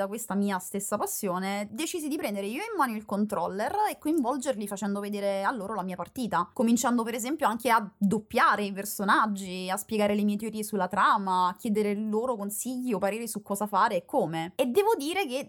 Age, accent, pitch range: 20-39, native, 195-250 Hz